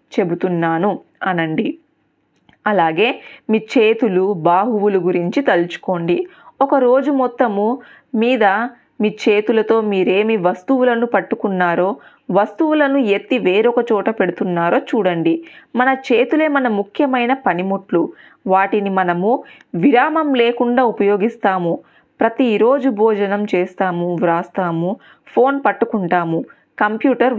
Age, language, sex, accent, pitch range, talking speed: 20-39, Telugu, female, native, 180-250 Hz, 85 wpm